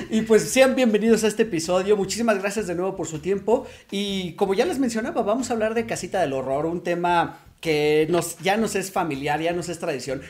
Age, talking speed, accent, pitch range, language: 40-59, 215 wpm, Mexican, 160-210 Hz, Spanish